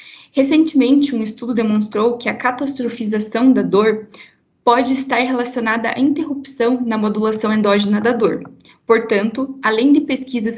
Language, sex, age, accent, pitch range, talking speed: Portuguese, female, 20-39, Brazilian, 210-255 Hz, 130 wpm